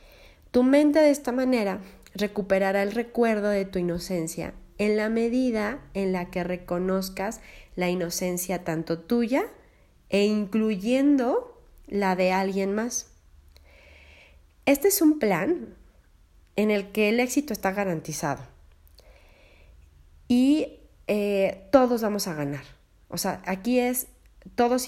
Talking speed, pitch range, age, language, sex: 120 wpm, 175-235 Hz, 30-49, English, female